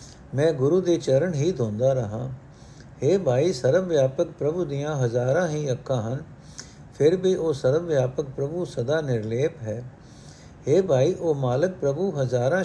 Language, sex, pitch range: Punjabi, male, 130-165 Hz